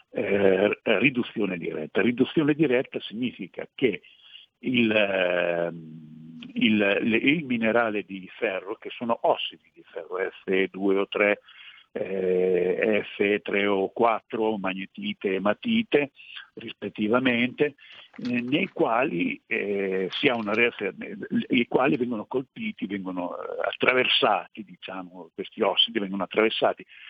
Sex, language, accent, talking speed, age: male, Italian, native, 110 wpm, 60-79